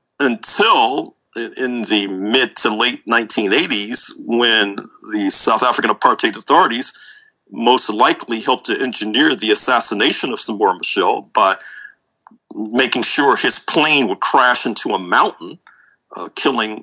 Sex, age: male, 50-69